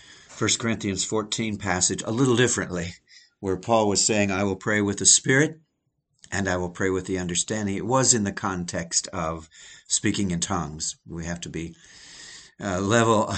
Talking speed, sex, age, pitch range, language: 175 wpm, male, 60-79, 90-120 Hz, English